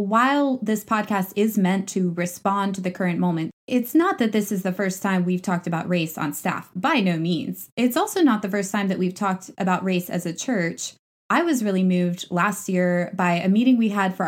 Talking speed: 225 wpm